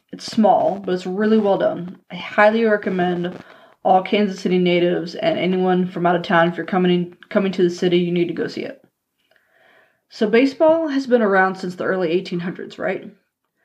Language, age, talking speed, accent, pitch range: English, 20-39, 190 wpm, American, 175-210 Hz